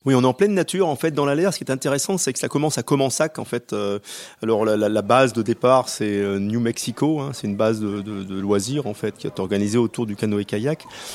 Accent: French